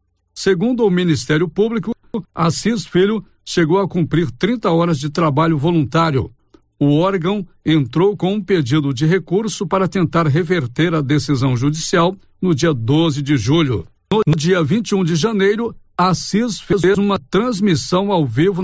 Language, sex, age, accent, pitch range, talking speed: Portuguese, male, 60-79, Brazilian, 155-190 Hz, 140 wpm